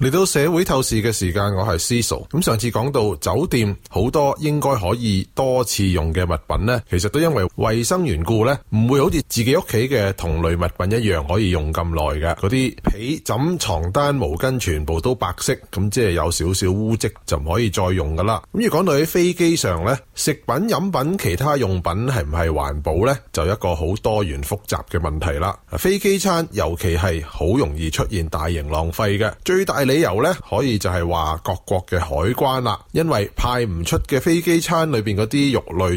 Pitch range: 90-135 Hz